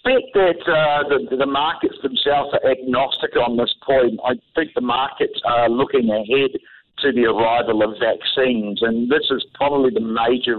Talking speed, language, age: 175 wpm, English, 50-69